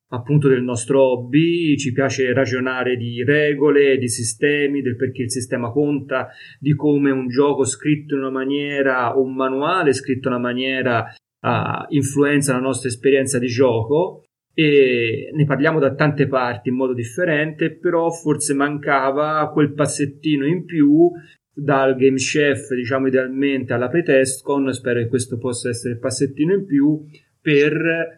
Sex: male